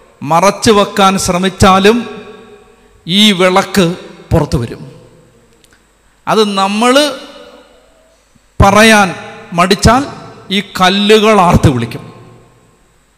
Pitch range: 180-230 Hz